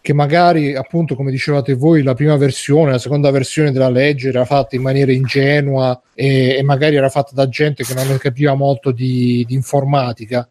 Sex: male